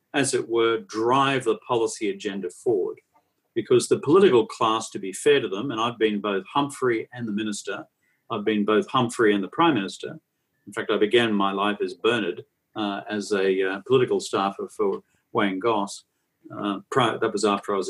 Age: 50-69